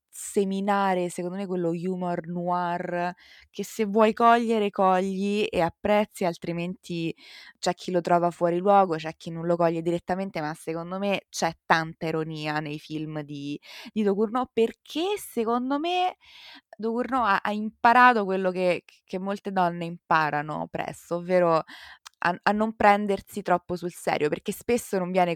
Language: Italian